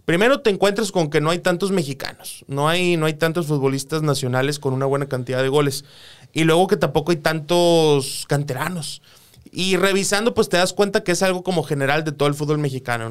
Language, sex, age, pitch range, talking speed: Spanish, male, 20-39, 140-175 Hz, 205 wpm